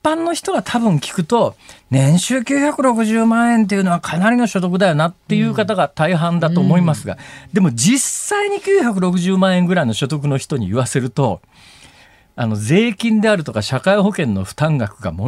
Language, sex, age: Japanese, male, 40-59